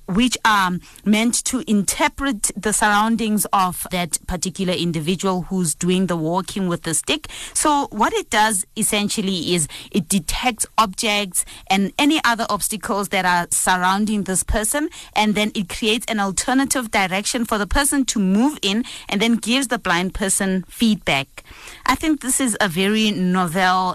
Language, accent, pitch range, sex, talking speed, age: English, South African, 185-230 Hz, female, 160 wpm, 30-49